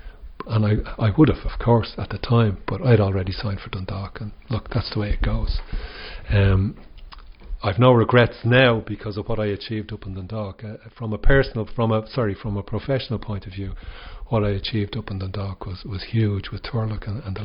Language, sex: English, male